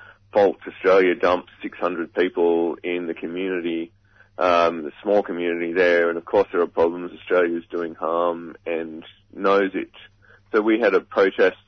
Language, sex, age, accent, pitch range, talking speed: English, male, 30-49, Australian, 85-100 Hz, 160 wpm